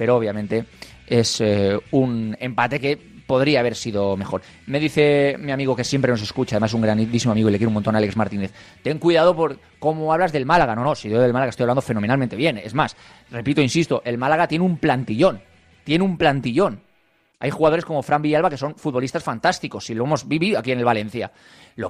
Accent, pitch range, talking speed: Spanish, 110-150 Hz, 215 wpm